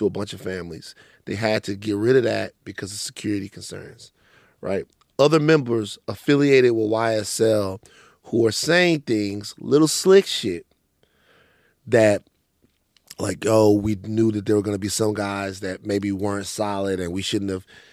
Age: 30-49